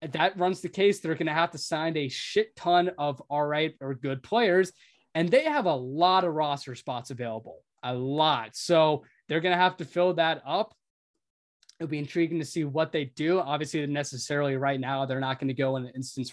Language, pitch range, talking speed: English, 135-160 Hz, 225 wpm